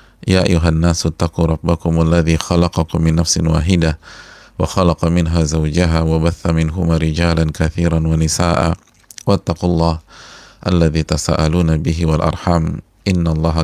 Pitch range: 80-85 Hz